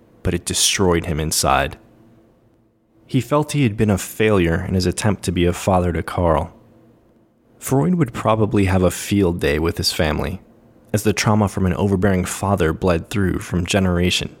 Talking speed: 175 wpm